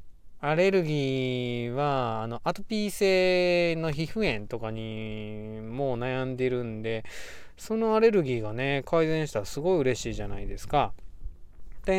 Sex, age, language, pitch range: male, 20-39, Japanese, 110-165 Hz